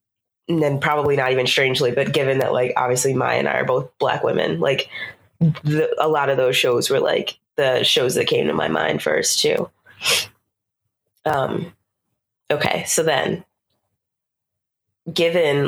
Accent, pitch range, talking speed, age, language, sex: American, 140-170 Hz, 155 wpm, 20-39, English, female